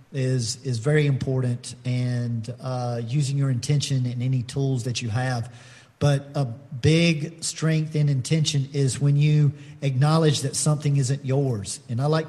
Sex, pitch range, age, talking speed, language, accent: male, 130-150 Hz, 40-59, 155 wpm, English, American